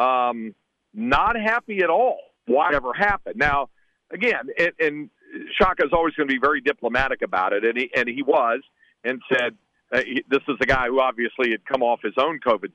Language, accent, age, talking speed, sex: English, American, 50-69, 200 wpm, male